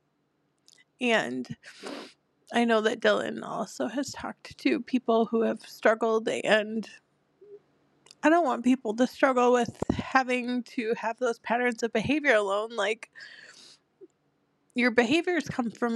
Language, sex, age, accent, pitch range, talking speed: English, female, 20-39, American, 200-240 Hz, 130 wpm